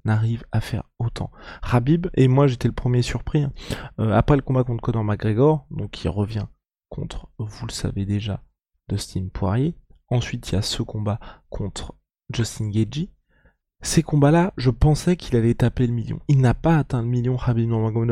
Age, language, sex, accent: 20-39, French, male, French